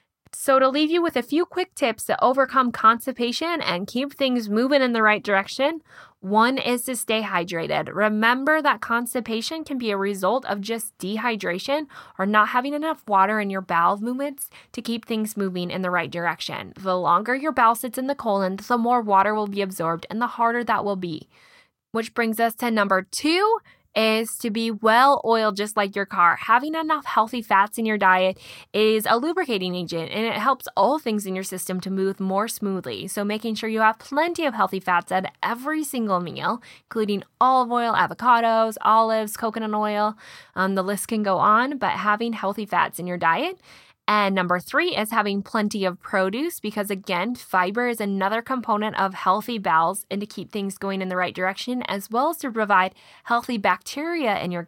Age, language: 20-39, English